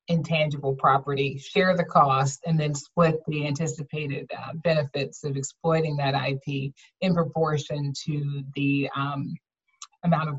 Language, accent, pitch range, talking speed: English, American, 145-170 Hz, 135 wpm